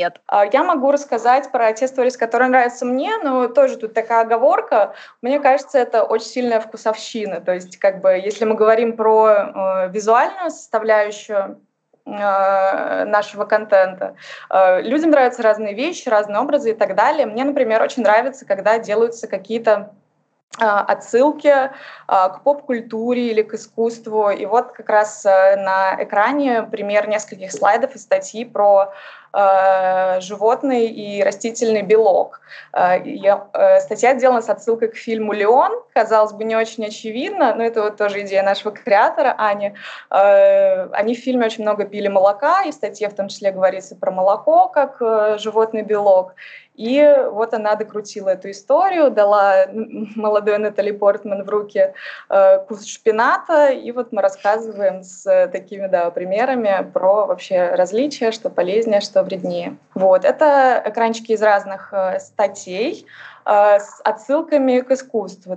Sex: female